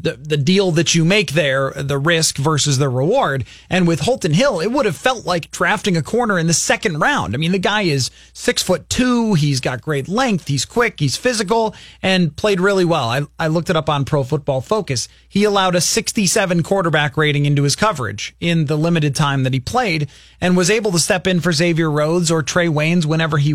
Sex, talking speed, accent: male, 220 wpm, American